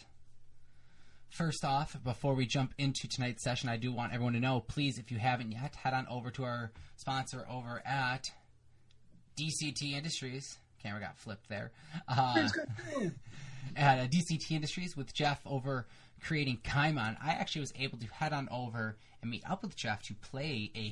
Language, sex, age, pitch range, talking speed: English, male, 20-39, 110-135 Hz, 165 wpm